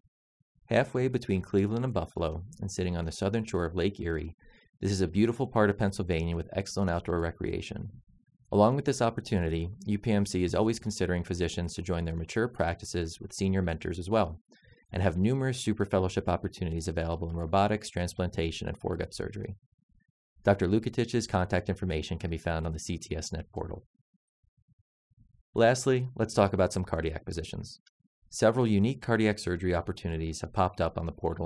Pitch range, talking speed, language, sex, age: 85-110 Hz, 165 wpm, English, male, 30-49